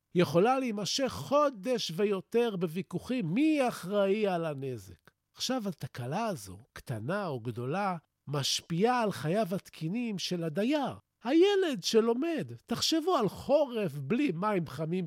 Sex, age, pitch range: male, 50-69, 165-245 Hz